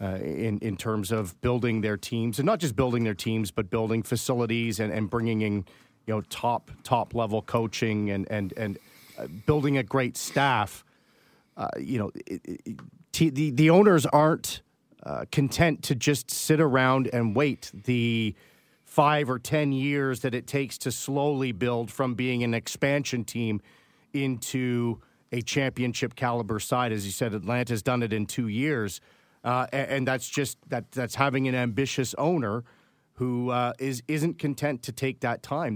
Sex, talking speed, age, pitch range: male, 170 wpm, 40-59, 115-140 Hz